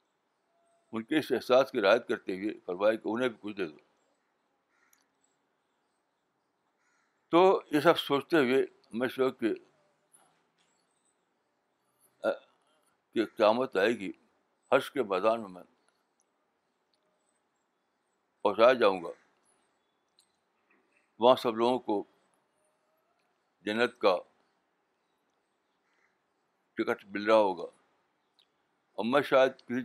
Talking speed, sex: 95 wpm, male